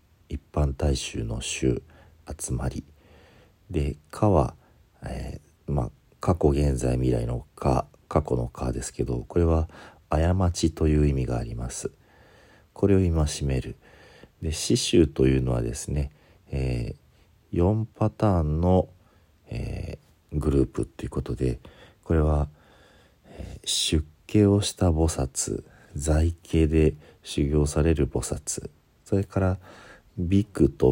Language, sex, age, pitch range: Japanese, male, 50-69, 70-95 Hz